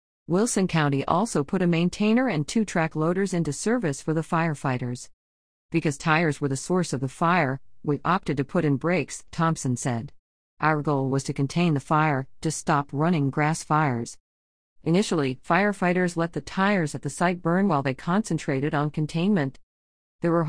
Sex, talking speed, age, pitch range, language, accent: female, 175 wpm, 40-59, 140-180 Hz, English, American